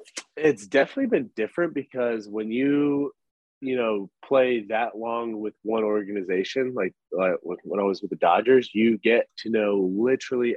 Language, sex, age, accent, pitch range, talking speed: English, male, 30-49, American, 95-120 Hz, 160 wpm